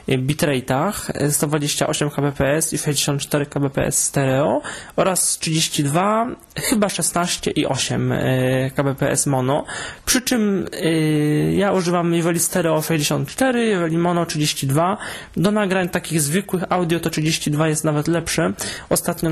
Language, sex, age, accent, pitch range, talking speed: Polish, male, 20-39, native, 145-180 Hz, 110 wpm